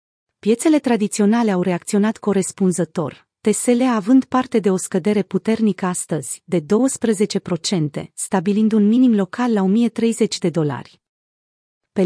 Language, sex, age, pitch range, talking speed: Romanian, female, 30-49, 180-220 Hz, 120 wpm